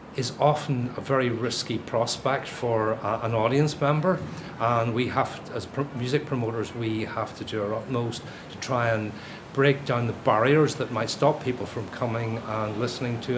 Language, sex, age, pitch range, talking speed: English, male, 40-59, 115-135 Hz, 175 wpm